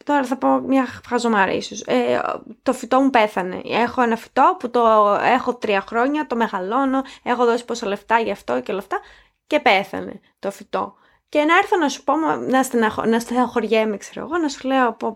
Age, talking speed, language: 20-39, 200 wpm, Greek